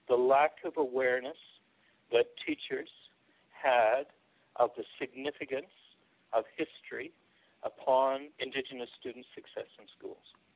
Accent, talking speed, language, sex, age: American, 100 wpm, English, male, 60-79